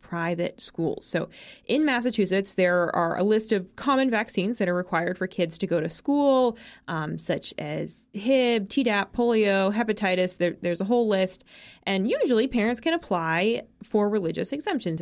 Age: 20-39